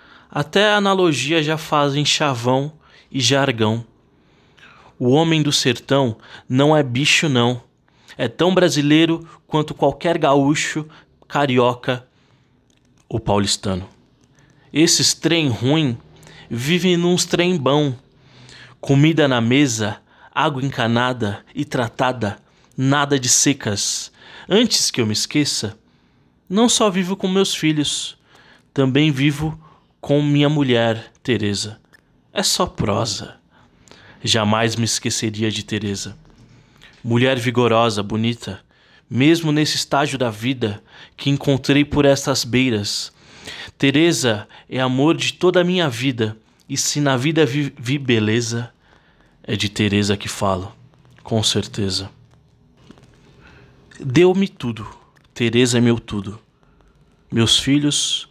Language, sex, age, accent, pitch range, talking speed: Portuguese, male, 20-39, Brazilian, 115-150 Hz, 110 wpm